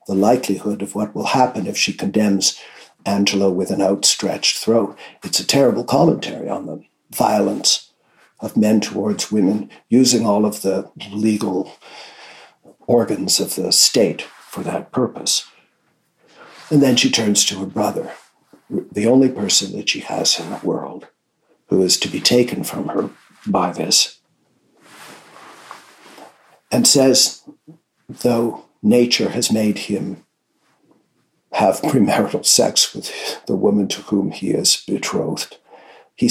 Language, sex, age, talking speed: English, male, 60-79, 135 wpm